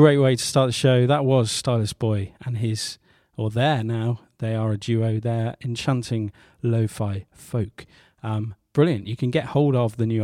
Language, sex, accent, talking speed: English, male, British, 190 wpm